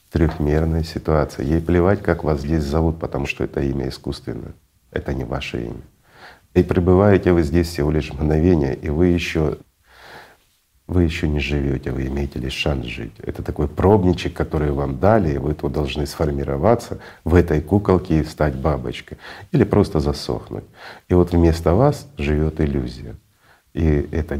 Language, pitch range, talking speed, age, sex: Russian, 70-85 Hz, 155 wpm, 50-69, male